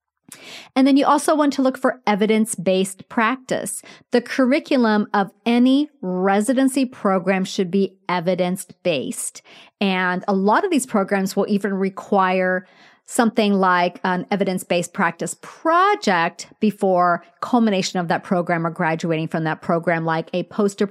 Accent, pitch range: American, 180-230 Hz